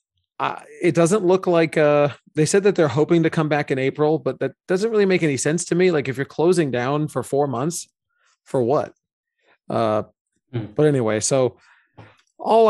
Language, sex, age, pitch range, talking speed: English, male, 30-49, 120-150 Hz, 190 wpm